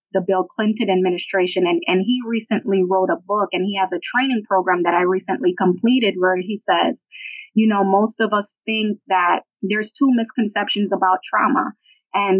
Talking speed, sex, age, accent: 180 wpm, female, 20-39, American